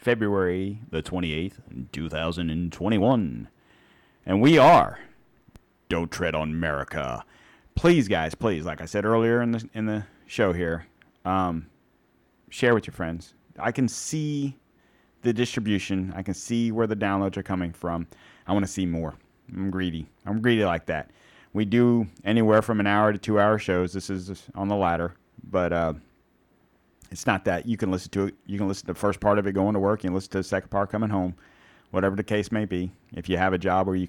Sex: male